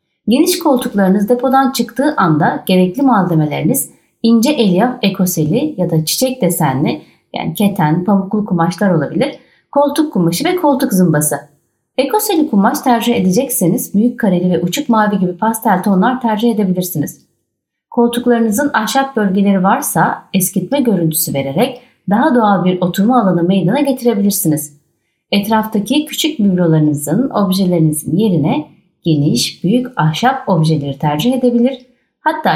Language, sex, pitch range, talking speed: Turkish, female, 170-245 Hz, 120 wpm